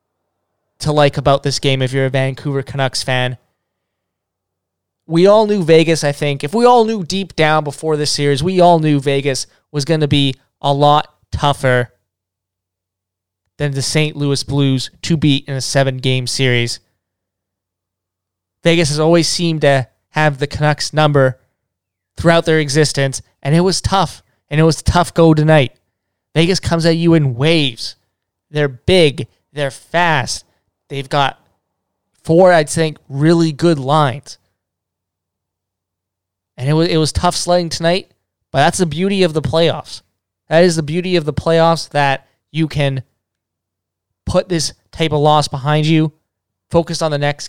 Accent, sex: American, male